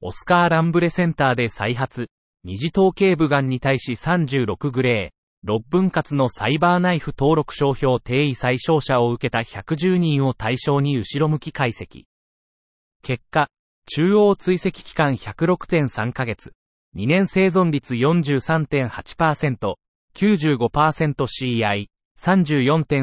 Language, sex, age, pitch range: Japanese, male, 30-49, 125-165 Hz